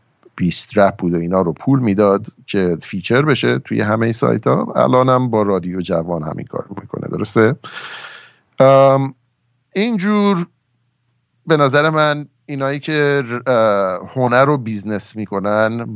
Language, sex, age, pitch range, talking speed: Persian, male, 50-69, 95-125 Hz, 125 wpm